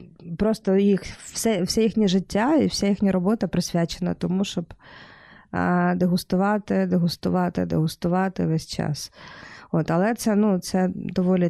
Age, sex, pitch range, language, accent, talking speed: 20-39, female, 175-210 Hz, Ukrainian, native, 125 wpm